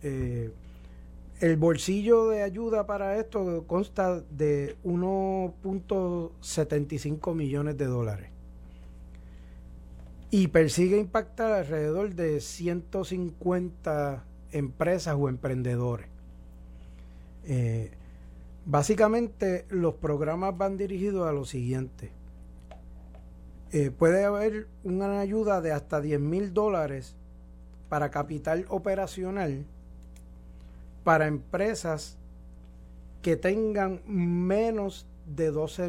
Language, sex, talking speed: Spanish, male, 85 wpm